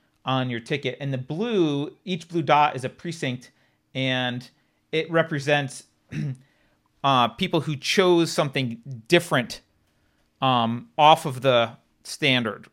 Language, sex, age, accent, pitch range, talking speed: English, male, 40-59, American, 120-160 Hz, 125 wpm